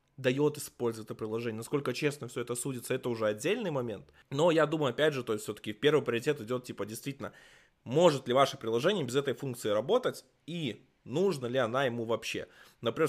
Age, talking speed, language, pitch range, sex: 20-39, 190 wpm, Russian, 115-150 Hz, male